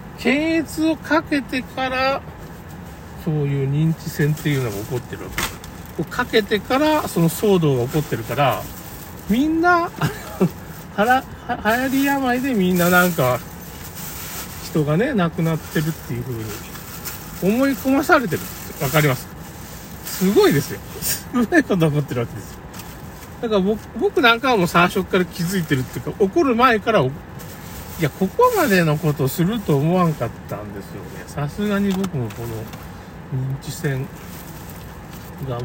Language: Japanese